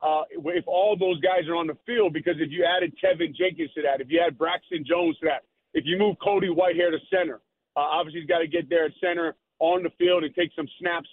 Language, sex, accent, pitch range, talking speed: English, male, American, 150-180 Hz, 255 wpm